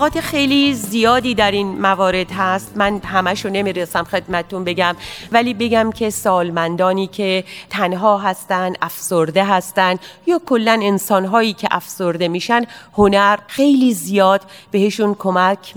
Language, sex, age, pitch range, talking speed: Persian, female, 40-59, 185-225 Hz, 120 wpm